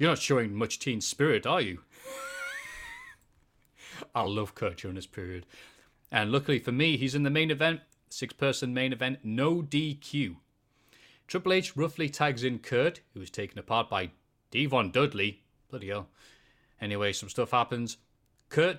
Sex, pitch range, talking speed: male, 105-145 Hz, 155 wpm